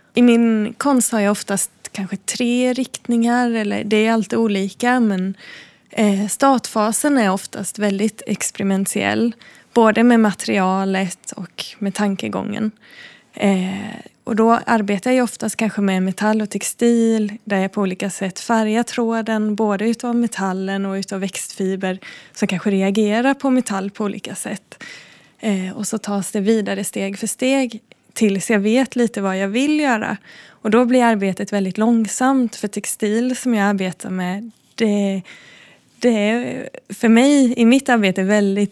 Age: 20-39